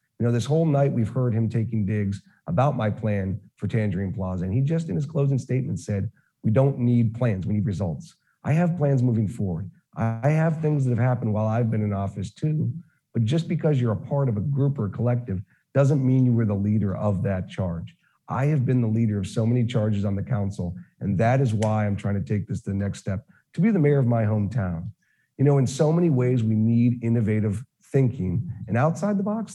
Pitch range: 110-150 Hz